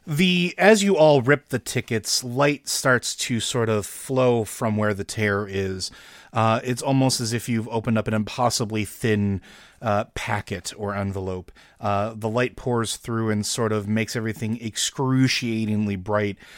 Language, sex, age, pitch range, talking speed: English, male, 30-49, 105-125 Hz, 165 wpm